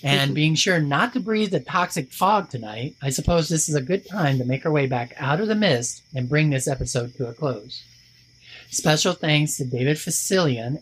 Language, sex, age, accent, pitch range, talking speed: English, male, 40-59, American, 125-160 Hz, 210 wpm